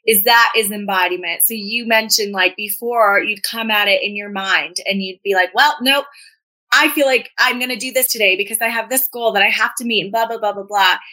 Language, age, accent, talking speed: English, 20-39, American, 255 wpm